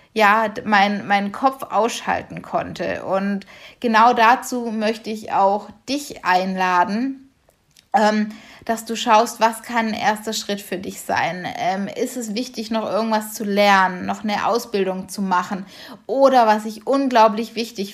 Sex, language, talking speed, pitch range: female, German, 145 wpm, 205-235 Hz